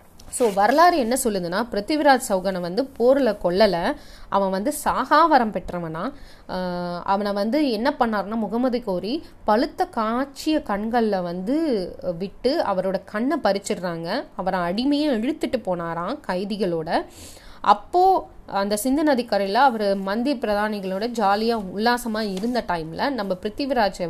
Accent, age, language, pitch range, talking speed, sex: native, 30-49, Tamil, 185-260 Hz, 110 wpm, female